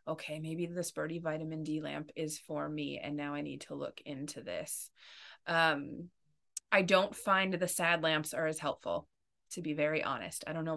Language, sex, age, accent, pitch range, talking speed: English, female, 30-49, American, 165-210 Hz, 195 wpm